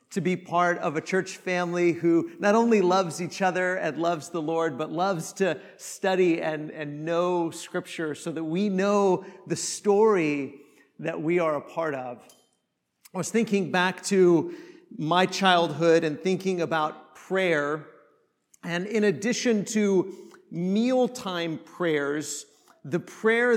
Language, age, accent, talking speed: English, 50-69, American, 145 wpm